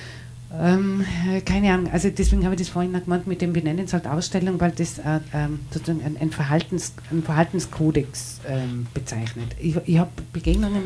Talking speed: 180 wpm